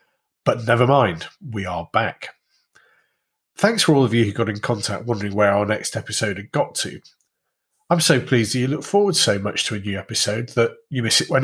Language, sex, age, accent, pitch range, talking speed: English, male, 30-49, British, 105-150 Hz, 215 wpm